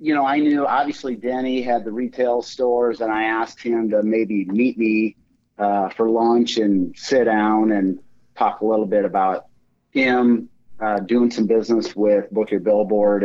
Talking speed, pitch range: 175 wpm, 105-120 Hz